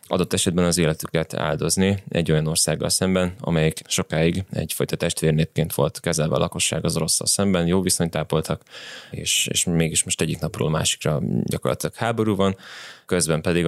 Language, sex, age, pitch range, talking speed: Hungarian, male, 20-39, 80-90 Hz, 155 wpm